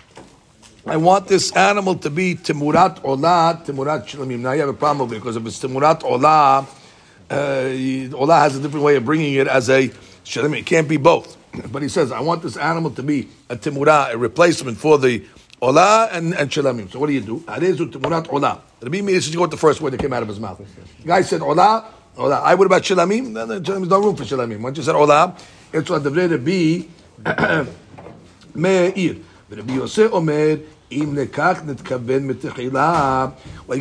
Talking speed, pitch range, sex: 175 wpm, 135-175 Hz, male